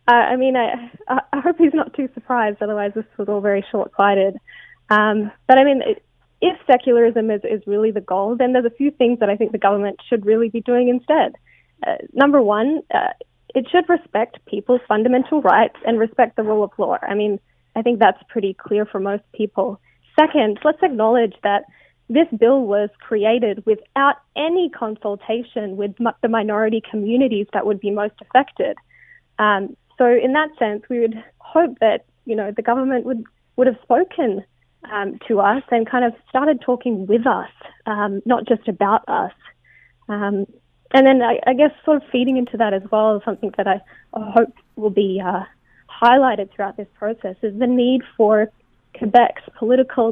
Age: 20-39